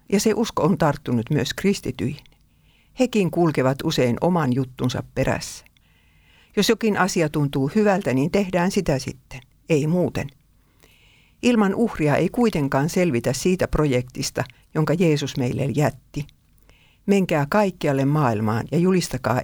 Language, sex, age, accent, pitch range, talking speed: Finnish, female, 60-79, native, 130-180 Hz, 125 wpm